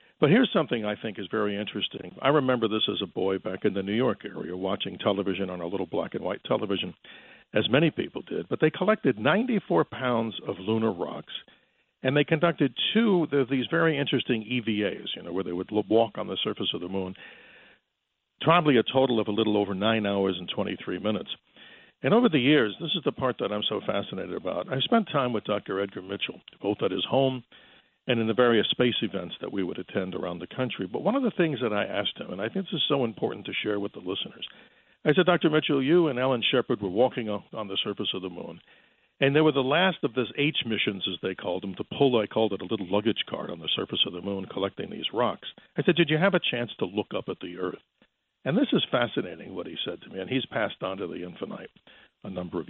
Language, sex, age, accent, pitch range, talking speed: English, male, 50-69, American, 100-140 Hz, 240 wpm